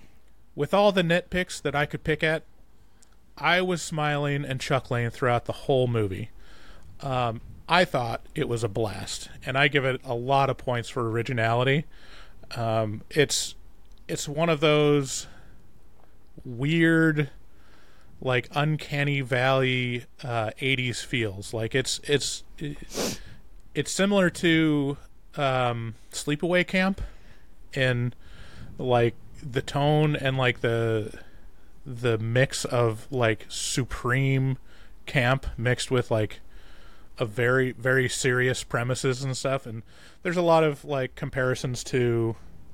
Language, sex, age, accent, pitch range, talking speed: English, male, 30-49, American, 115-145 Hz, 125 wpm